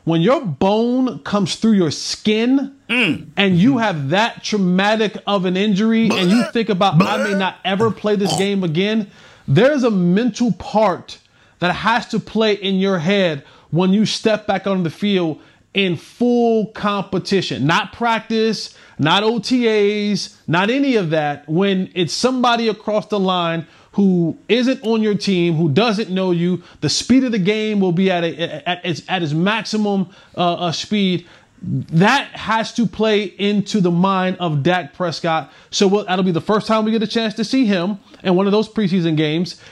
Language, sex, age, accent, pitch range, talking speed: English, male, 30-49, American, 180-220 Hz, 175 wpm